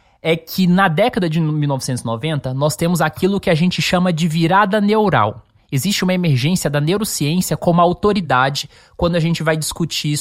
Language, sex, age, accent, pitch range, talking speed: Portuguese, male, 20-39, Brazilian, 130-175 Hz, 165 wpm